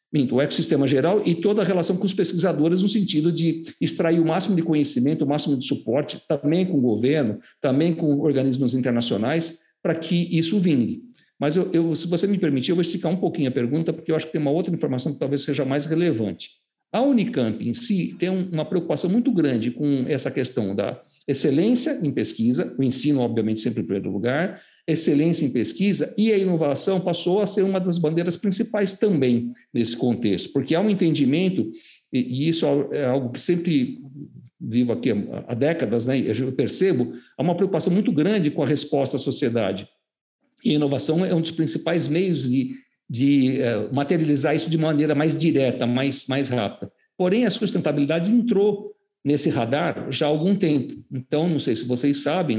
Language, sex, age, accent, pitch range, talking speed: Portuguese, male, 60-79, Brazilian, 125-175 Hz, 185 wpm